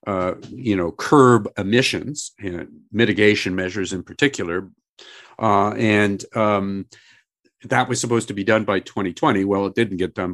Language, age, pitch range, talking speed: English, 50-69, 100-120 Hz, 150 wpm